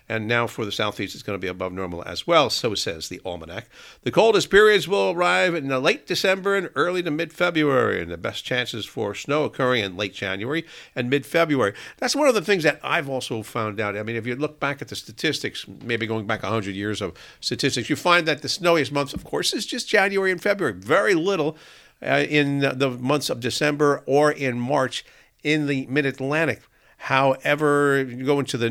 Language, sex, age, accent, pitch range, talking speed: English, male, 50-69, American, 110-150 Hz, 210 wpm